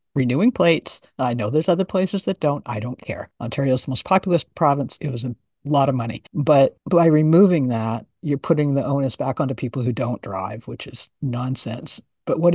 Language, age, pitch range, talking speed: English, 60-79, 140-180 Hz, 200 wpm